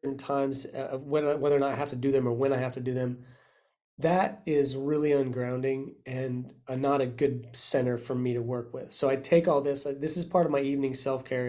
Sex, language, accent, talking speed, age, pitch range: male, English, American, 240 wpm, 30-49, 130-145 Hz